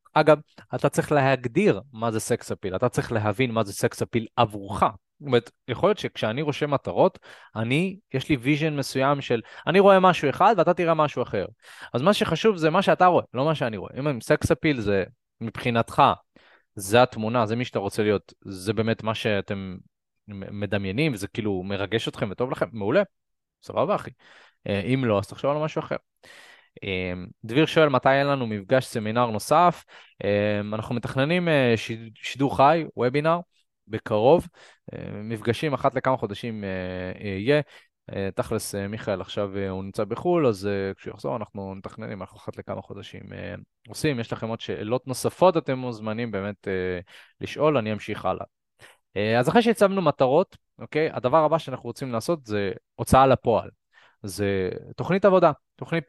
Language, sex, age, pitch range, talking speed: Hebrew, male, 20-39, 105-150 Hz, 155 wpm